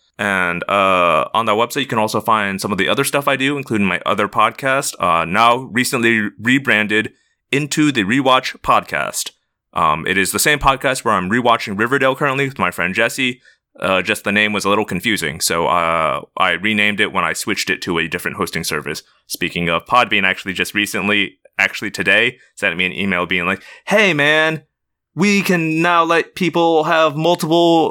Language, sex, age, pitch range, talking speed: English, male, 20-39, 100-145 Hz, 190 wpm